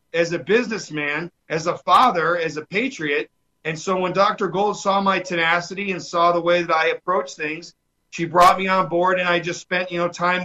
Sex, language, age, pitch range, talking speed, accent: male, English, 40-59, 165-215 Hz, 215 wpm, American